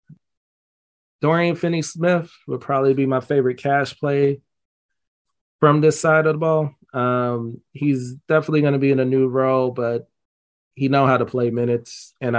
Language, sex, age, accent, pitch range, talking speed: English, male, 30-49, American, 115-140 Hz, 165 wpm